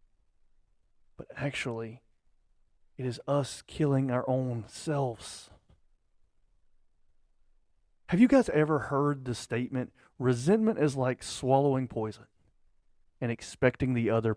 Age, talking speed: 30-49, 105 wpm